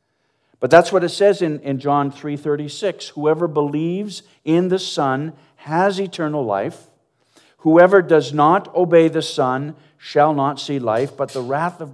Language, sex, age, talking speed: English, male, 50-69, 155 wpm